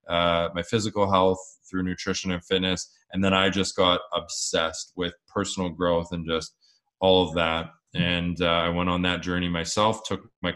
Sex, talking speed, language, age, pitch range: male, 180 wpm, English, 20-39, 90-100 Hz